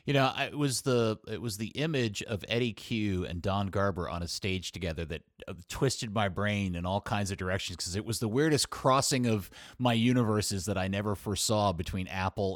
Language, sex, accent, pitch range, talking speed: English, male, American, 100-130 Hz, 205 wpm